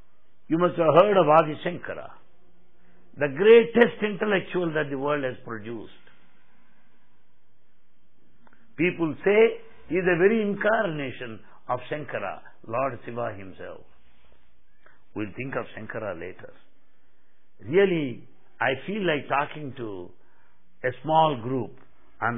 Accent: Indian